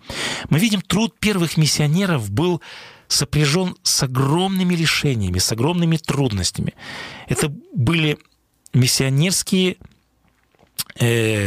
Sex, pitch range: male, 125-175 Hz